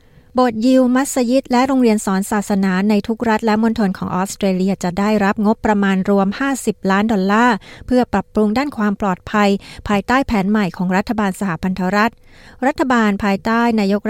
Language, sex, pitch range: Thai, female, 190-230 Hz